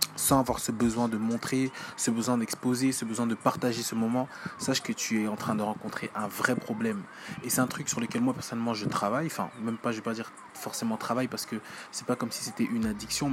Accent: French